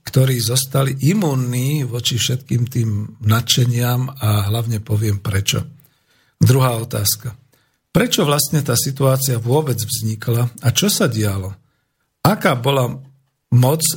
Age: 50-69